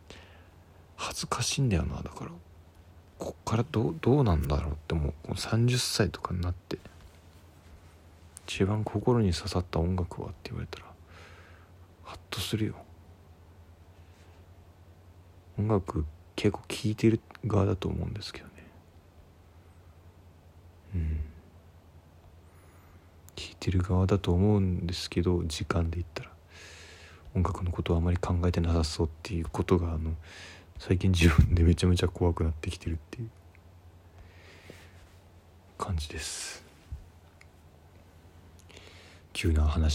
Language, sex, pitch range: Japanese, male, 85-90 Hz